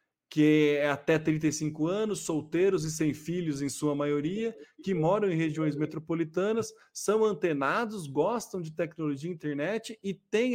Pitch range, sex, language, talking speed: 155-195 Hz, male, Portuguese, 150 wpm